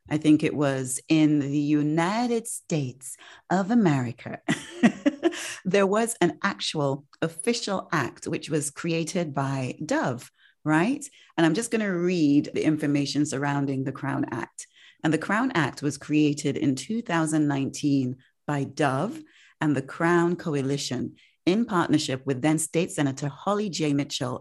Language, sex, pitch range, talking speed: English, female, 140-180 Hz, 140 wpm